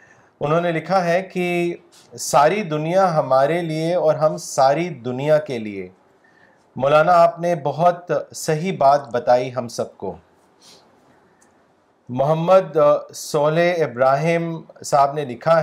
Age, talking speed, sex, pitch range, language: 40-59, 120 wpm, male, 145-175 Hz, Urdu